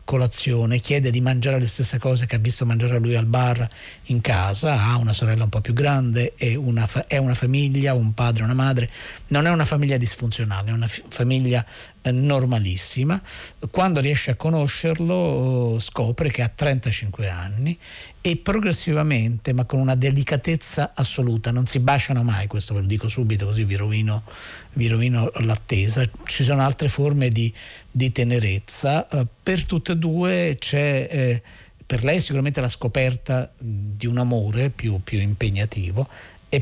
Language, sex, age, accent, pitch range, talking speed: Italian, male, 50-69, native, 110-140 Hz, 155 wpm